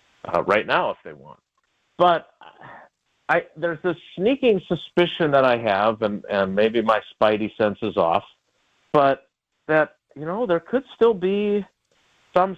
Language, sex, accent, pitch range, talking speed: English, male, American, 115-155 Hz, 150 wpm